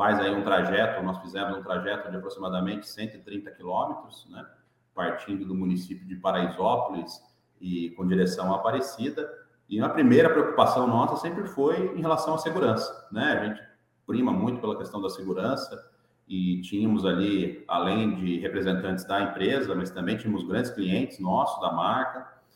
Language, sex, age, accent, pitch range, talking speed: Portuguese, male, 40-59, Brazilian, 95-120 Hz, 155 wpm